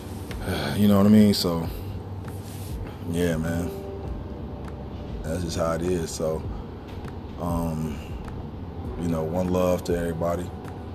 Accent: American